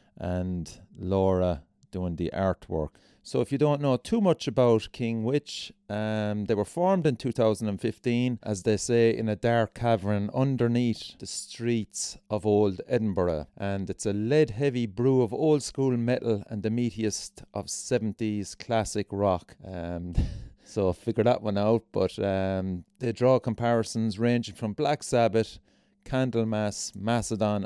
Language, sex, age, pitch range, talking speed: English, male, 30-49, 100-125 Hz, 145 wpm